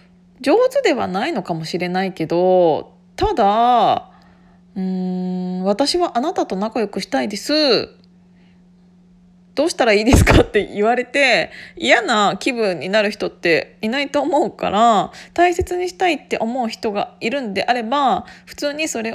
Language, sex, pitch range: Japanese, female, 185-245 Hz